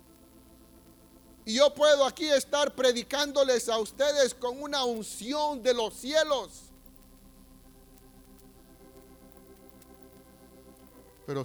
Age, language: 50-69, Spanish